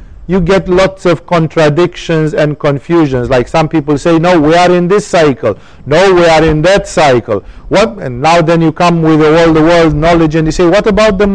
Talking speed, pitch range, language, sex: 210 wpm, 140-180 Hz, English, male